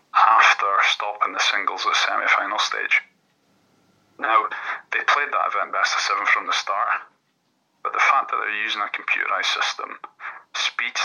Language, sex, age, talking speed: English, male, 30-49, 155 wpm